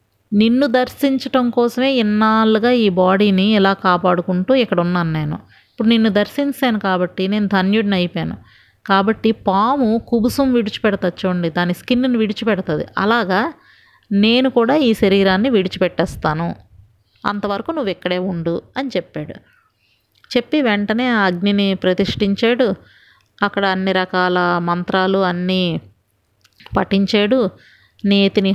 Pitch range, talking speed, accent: 180-230 Hz, 105 wpm, native